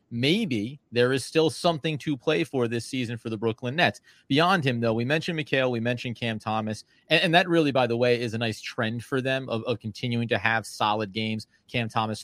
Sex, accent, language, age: male, American, English, 30-49